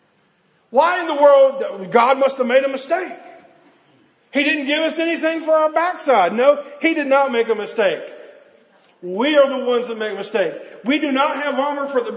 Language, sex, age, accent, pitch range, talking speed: English, male, 50-69, American, 225-305 Hz, 195 wpm